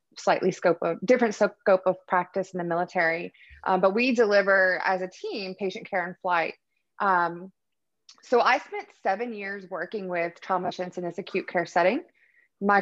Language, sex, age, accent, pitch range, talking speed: English, female, 20-39, American, 180-210 Hz, 170 wpm